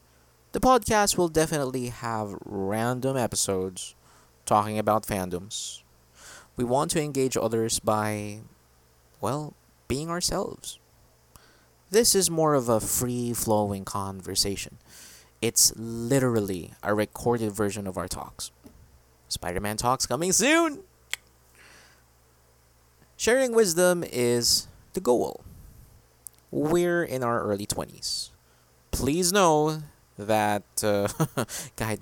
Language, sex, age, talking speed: English, male, 20-39, 95 wpm